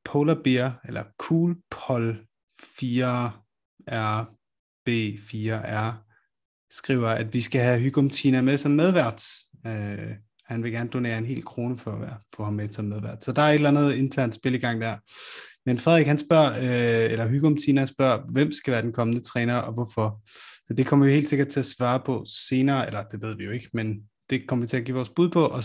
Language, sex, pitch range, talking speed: Danish, male, 115-145 Hz, 205 wpm